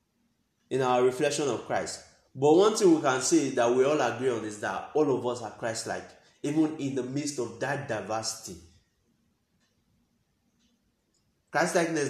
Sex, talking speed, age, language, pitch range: male, 155 wpm, 20-39, English, 115-145 Hz